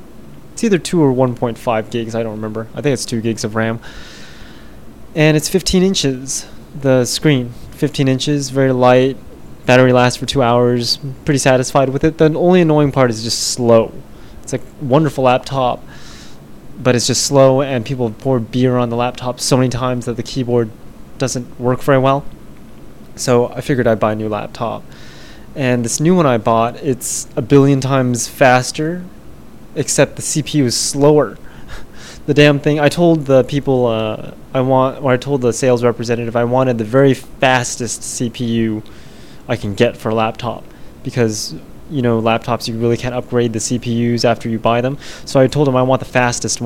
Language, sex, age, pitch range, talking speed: English, male, 20-39, 115-140 Hz, 180 wpm